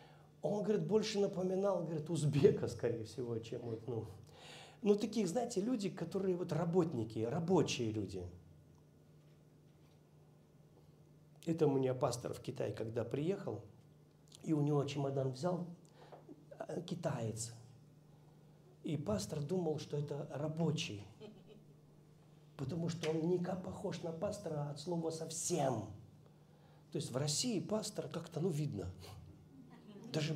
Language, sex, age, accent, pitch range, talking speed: Russian, male, 50-69, native, 145-185 Hz, 115 wpm